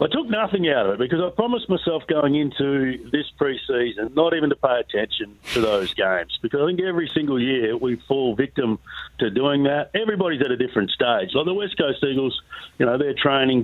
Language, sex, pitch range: English, male, 120-150 Hz